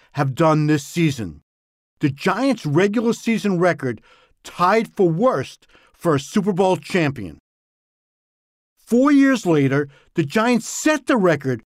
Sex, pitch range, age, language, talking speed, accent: male, 140-205 Hz, 50-69, English, 125 wpm, American